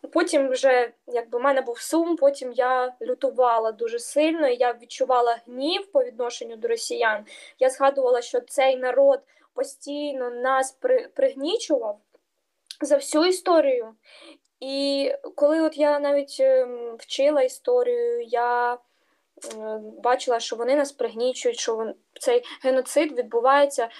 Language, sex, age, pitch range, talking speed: Ukrainian, female, 20-39, 250-355 Hz, 120 wpm